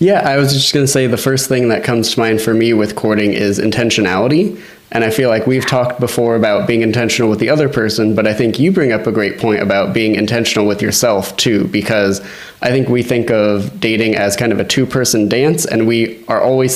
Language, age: English, 20-39